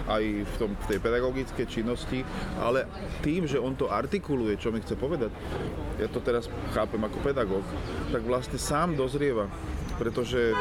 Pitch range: 100-125 Hz